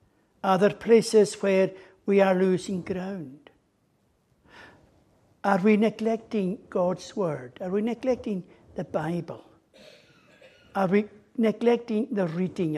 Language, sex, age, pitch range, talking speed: English, male, 60-79, 165-215 Hz, 110 wpm